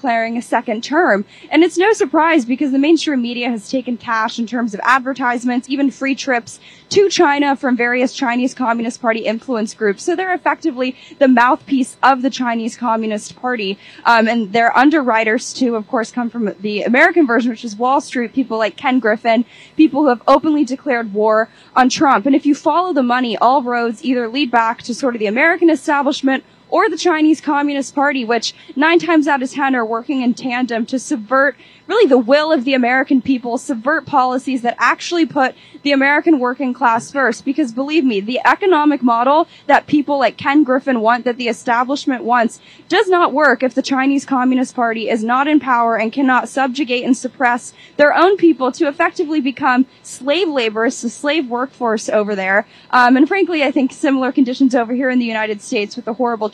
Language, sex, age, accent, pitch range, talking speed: English, female, 10-29, American, 235-290 Hz, 190 wpm